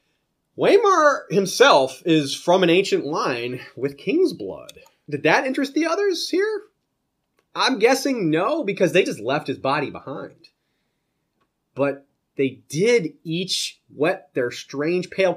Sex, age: male, 30-49